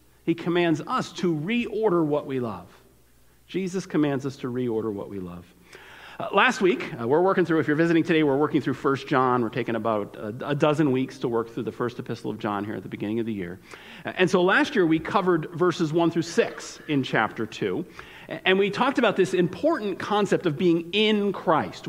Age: 50-69